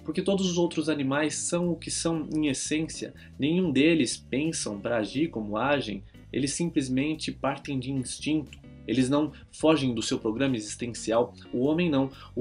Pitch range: 125-155 Hz